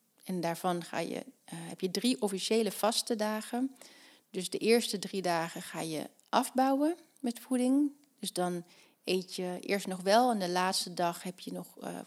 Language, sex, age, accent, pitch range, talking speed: Dutch, female, 30-49, Dutch, 185-245 Hz, 170 wpm